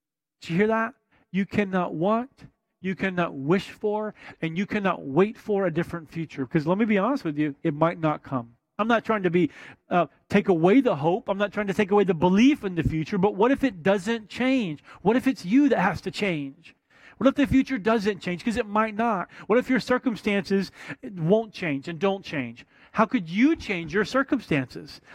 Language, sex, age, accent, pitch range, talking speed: English, male, 40-59, American, 155-215 Hz, 210 wpm